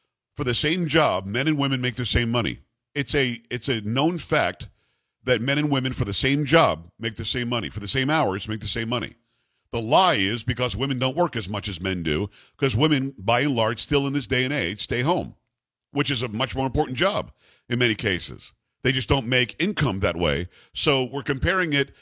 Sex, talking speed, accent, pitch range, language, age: male, 225 wpm, American, 120-150 Hz, English, 50-69